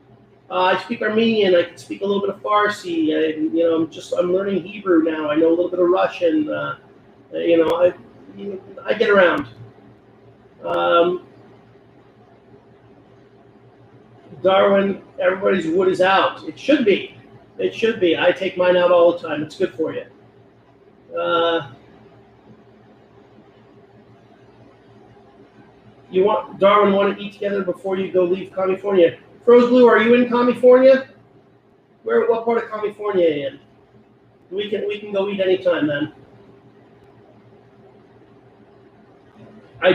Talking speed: 145 wpm